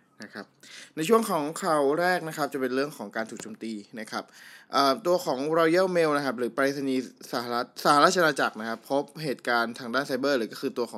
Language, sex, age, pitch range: Thai, male, 20-39, 115-155 Hz